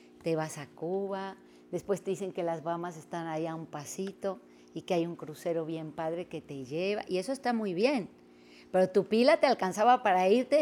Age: 40-59